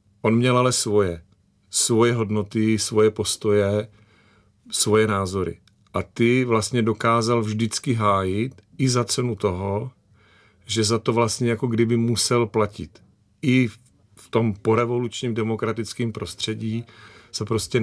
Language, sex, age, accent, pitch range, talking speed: Czech, male, 40-59, native, 105-115 Hz, 120 wpm